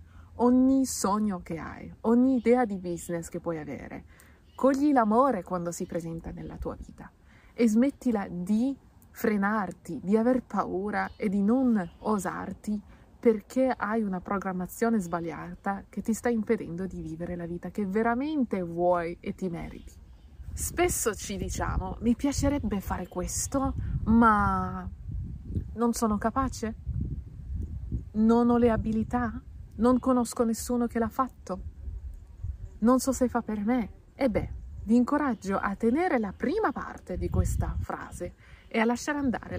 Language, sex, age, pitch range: Italian, female, 30-49, 180-245 Hz